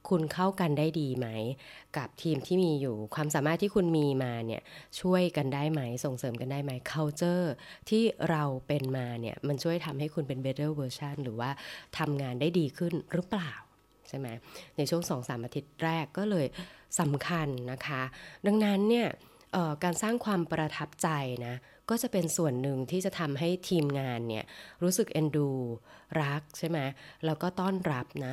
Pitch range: 135-170 Hz